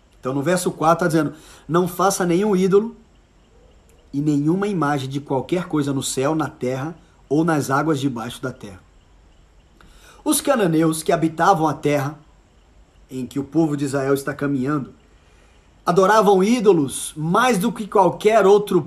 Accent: Brazilian